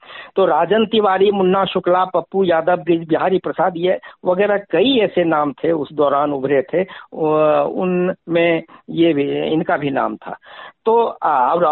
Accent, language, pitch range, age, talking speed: native, Hindi, 160-215 Hz, 50-69, 140 wpm